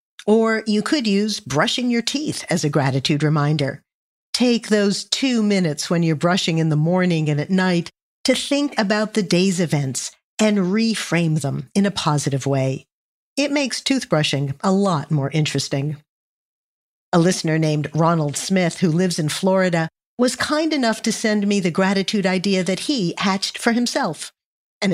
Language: English